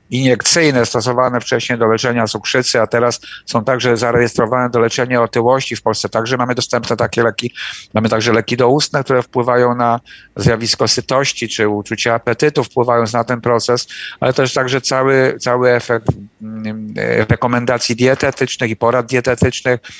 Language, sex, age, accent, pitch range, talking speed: Polish, male, 50-69, native, 120-130 Hz, 145 wpm